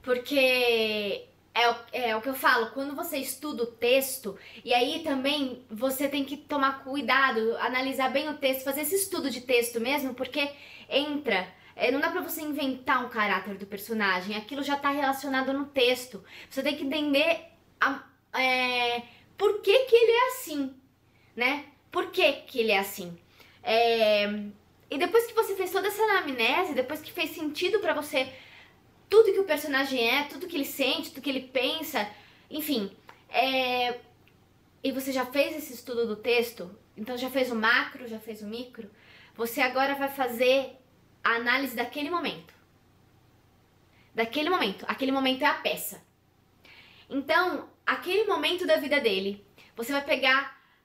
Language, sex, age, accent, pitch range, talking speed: Portuguese, female, 20-39, Brazilian, 235-295 Hz, 160 wpm